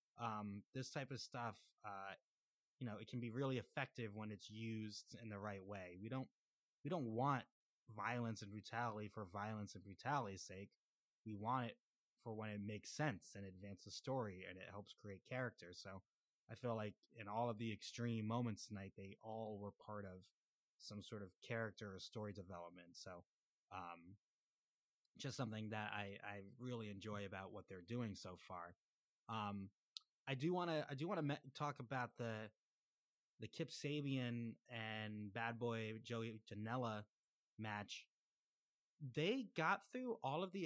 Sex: male